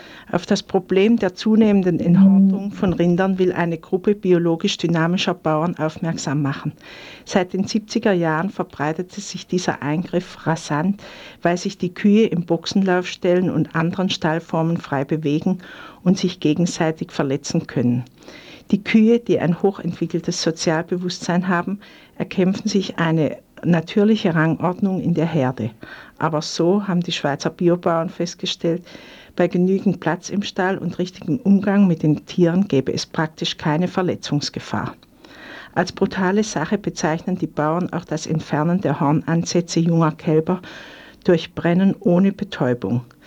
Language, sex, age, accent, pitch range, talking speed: German, female, 60-79, Austrian, 160-190 Hz, 130 wpm